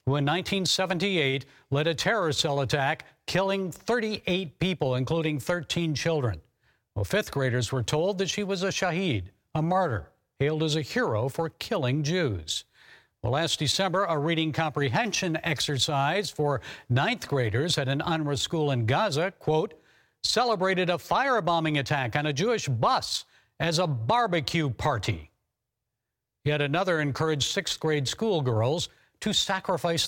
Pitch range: 135-185 Hz